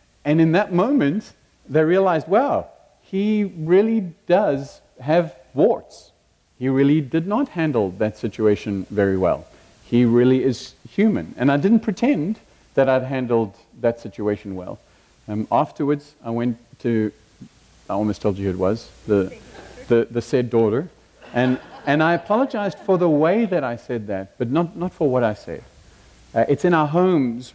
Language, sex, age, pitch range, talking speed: English, male, 50-69, 110-155 Hz, 165 wpm